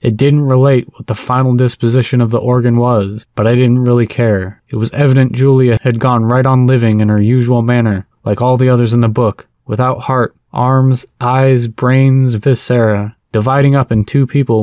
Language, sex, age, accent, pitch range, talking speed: English, male, 20-39, American, 110-130 Hz, 195 wpm